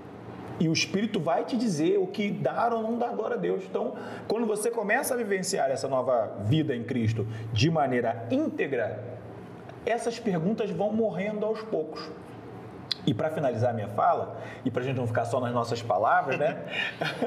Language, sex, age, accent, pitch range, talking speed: Portuguese, male, 40-59, Brazilian, 120-170 Hz, 180 wpm